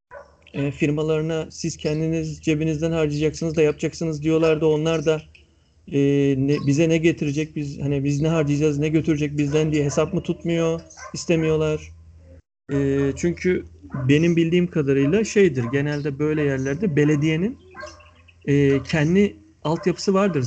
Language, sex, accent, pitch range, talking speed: Turkish, male, native, 130-165 Hz, 125 wpm